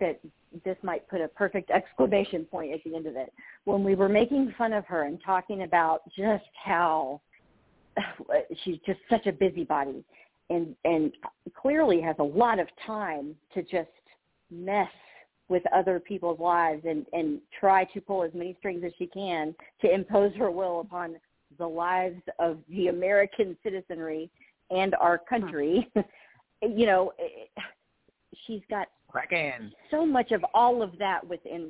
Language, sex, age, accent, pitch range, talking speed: English, female, 50-69, American, 170-240 Hz, 155 wpm